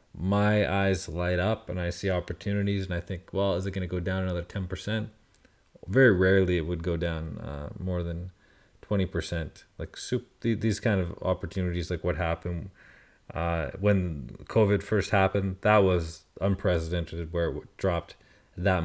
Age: 30-49